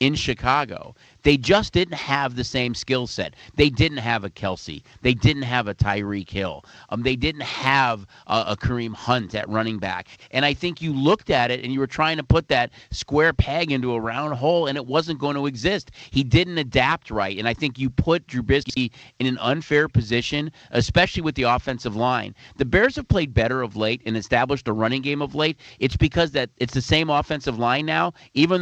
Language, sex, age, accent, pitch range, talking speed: English, male, 40-59, American, 115-145 Hz, 215 wpm